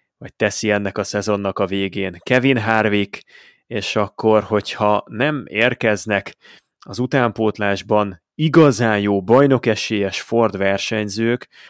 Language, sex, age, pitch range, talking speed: Hungarian, male, 30-49, 100-120 Hz, 110 wpm